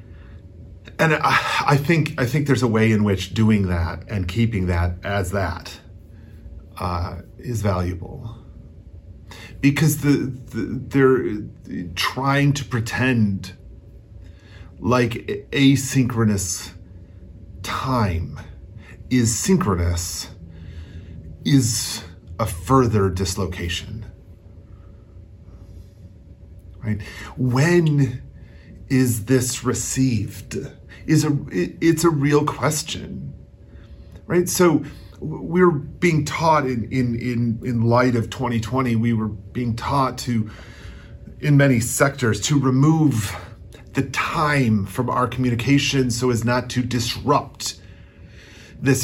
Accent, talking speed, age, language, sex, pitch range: American, 100 wpm, 40-59, English, male, 95-130 Hz